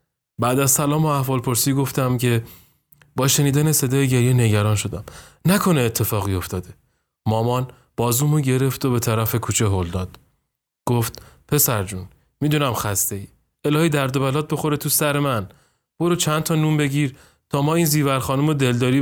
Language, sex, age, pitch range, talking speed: Persian, male, 30-49, 110-145 Hz, 160 wpm